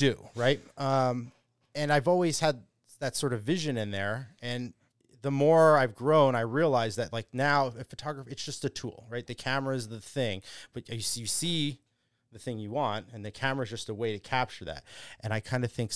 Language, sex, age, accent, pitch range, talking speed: English, male, 30-49, American, 110-130 Hz, 210 wpm